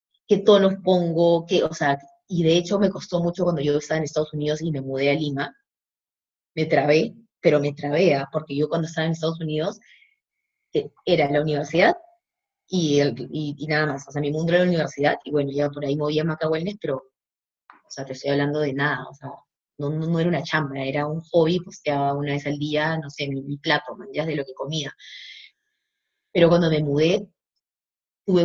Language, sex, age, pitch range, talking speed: Spanish, female, 20-39, 150-180 Hz, 215 wpm